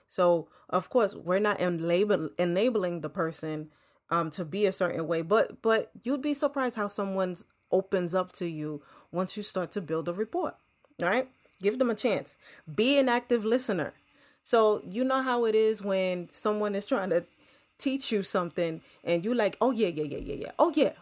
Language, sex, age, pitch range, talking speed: English, female, 30-49, 180-255 Hz, 195 wpm